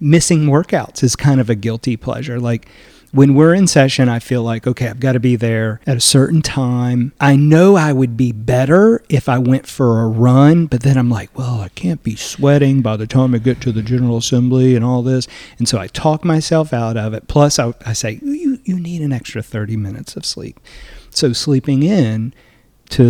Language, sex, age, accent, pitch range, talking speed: English, male, 40-59, American, 120-150 Hz, 220 wpm